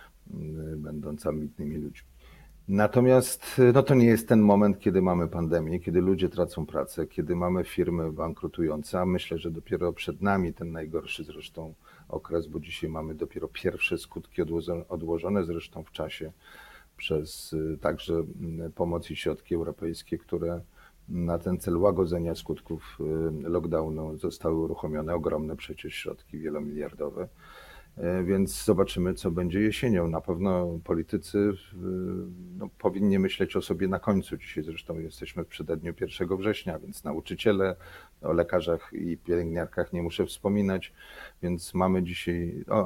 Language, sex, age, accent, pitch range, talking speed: Polish, male, 40-59, native, 80-95 Hz, 135 wpm